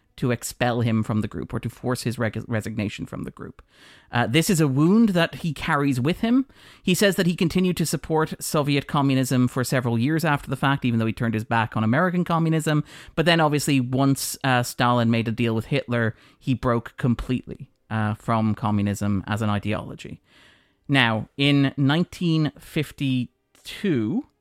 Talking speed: 175 wpm